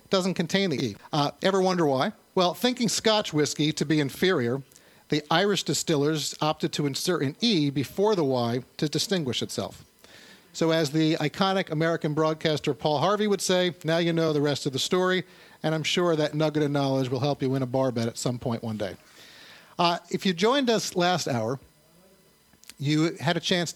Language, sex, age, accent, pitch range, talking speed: English, male, 50-69, American, 140-175 Hz, 195 wpm